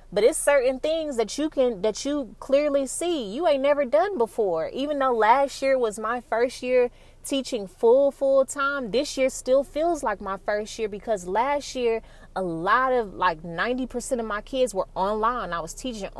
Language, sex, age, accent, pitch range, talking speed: English, female, 20-39, American, 210-270 Hz, 195 wpm